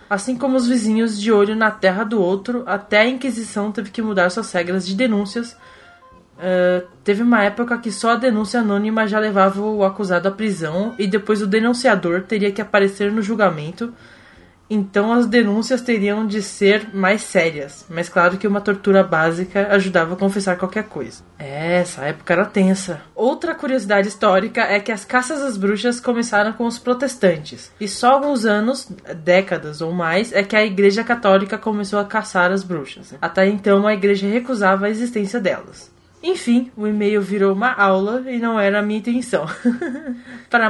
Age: 20-39